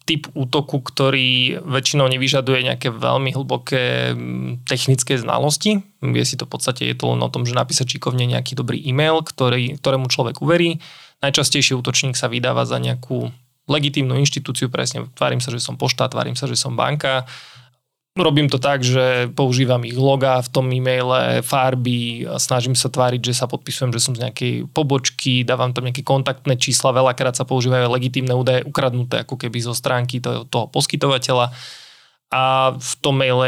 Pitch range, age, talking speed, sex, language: 125-135 Hz, 20-39, 165 wpm, male, Slovak